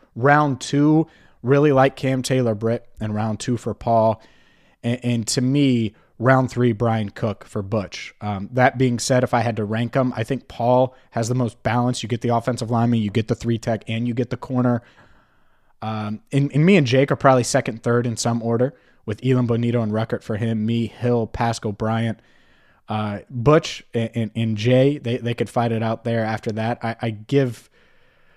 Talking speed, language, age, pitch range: 205 wpm, English, 20-39, 115-150 Hz